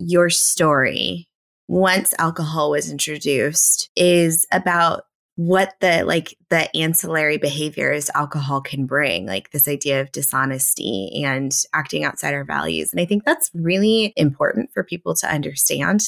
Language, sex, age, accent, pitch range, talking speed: English, female, 20-39, American, 145-195 Hz, 140 wpm